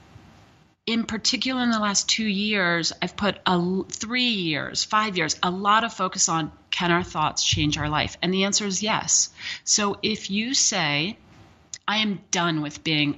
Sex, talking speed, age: female, 175 wpm, 30-49